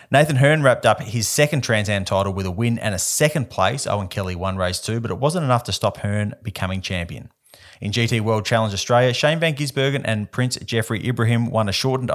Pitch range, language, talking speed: 100-125 Hz, English, 220 wpm